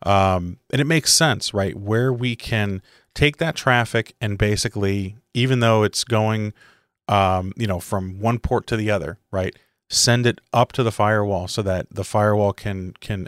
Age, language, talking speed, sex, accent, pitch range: 30-49, English, 180 wpm, male, American, 95-115 Hz